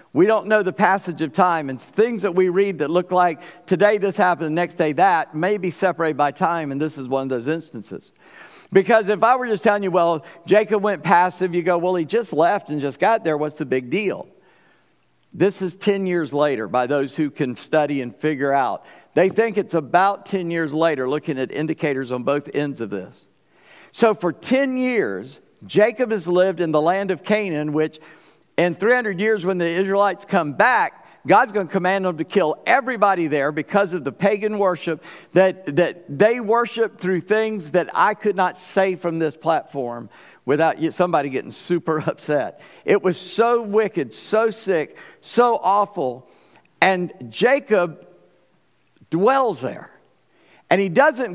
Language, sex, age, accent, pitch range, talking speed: English, male, 50-69, American, 160-210 Hz, 180 wpm